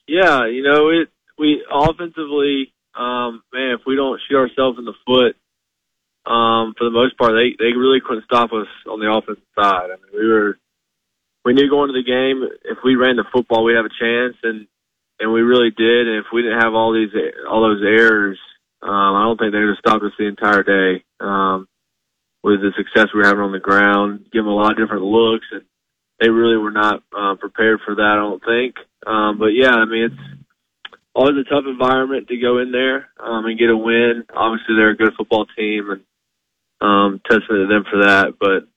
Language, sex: English, male